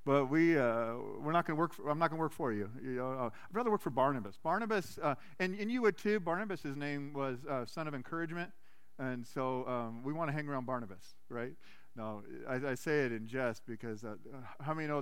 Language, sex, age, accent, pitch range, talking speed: English, male, 40-59, American, 120-160 Hz, 240 wpm